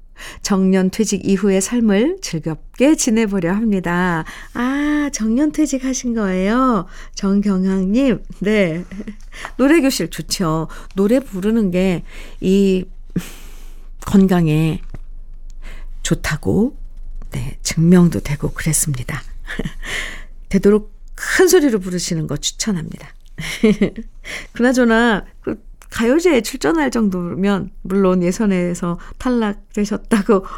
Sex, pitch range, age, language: female, 175-230 Hz, 50-69, Korean